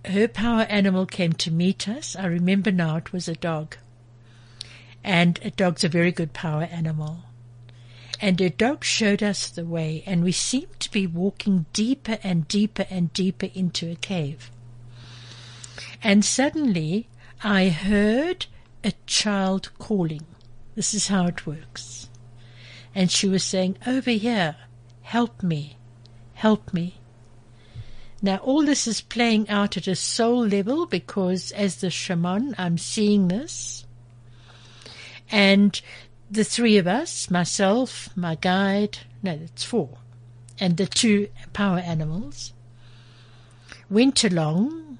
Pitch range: 120-200 Hz